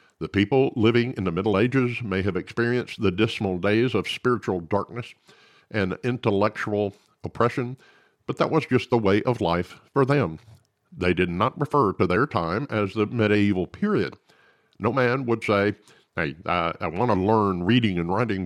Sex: male